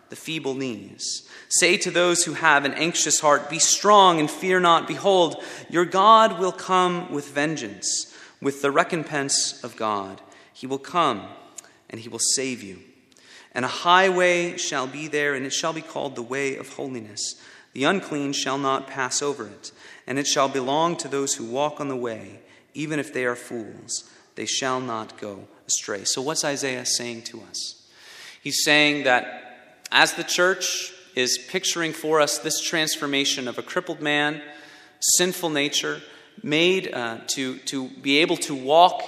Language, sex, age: English, male, 30-49